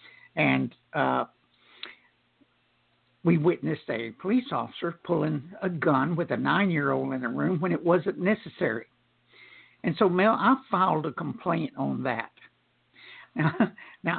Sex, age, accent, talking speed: male, 60-79, American, 125 wpm